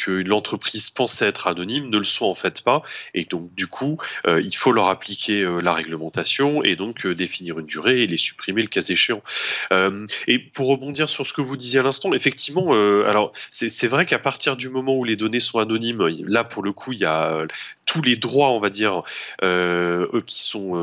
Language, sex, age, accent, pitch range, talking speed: French, male, 20-39, French, 95-130 Hz, 220 wpm